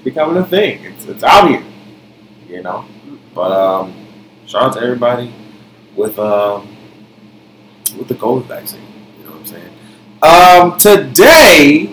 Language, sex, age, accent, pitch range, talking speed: English, male, 20-39, American, 105-125 Hz, 140 wpm